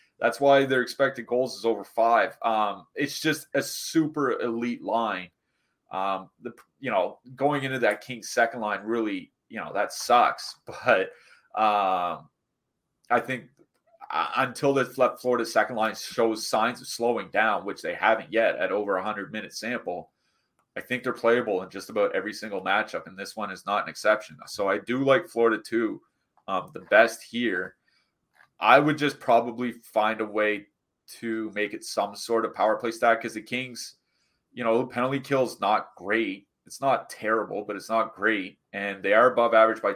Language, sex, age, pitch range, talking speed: English, male, 30-49, 105-130 Hz, 185 wpm